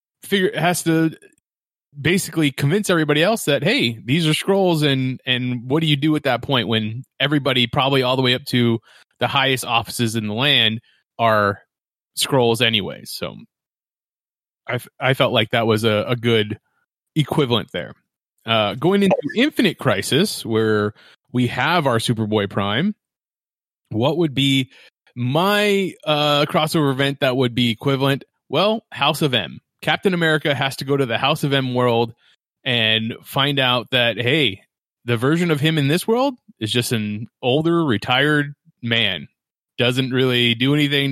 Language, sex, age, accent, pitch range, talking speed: English, male, 30-49, American, 120-155 Hz, 160 wpm